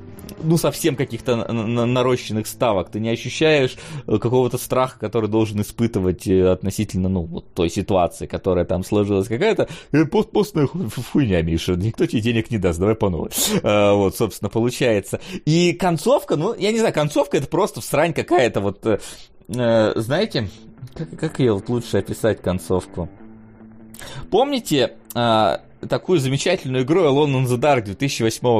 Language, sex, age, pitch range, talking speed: Russian, male, 30-49, 105-140 Hz, 150 wpm